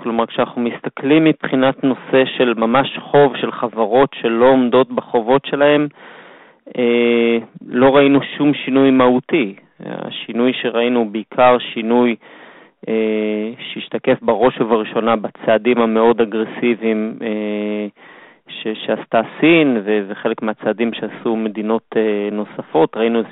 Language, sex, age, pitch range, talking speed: Hebrew, male, 30-49, 110-125 Hz, 115 wpm